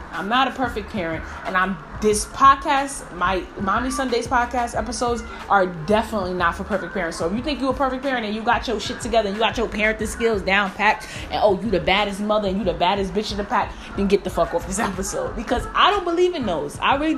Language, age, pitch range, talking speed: English, 20-39, 190-240 Hz, 250 wpm